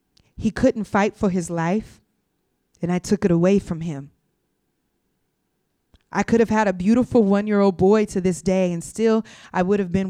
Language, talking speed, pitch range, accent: English, 180 wpm, 190-230 Hz, American